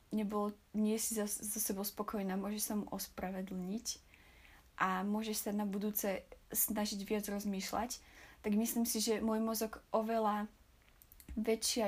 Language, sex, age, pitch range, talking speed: Slovak, female, 20-39, 200-225 Hz, 135 wpm